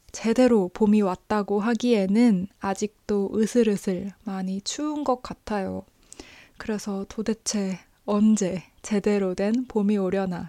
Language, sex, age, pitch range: Korean, female, 20-39, 195-240 Hz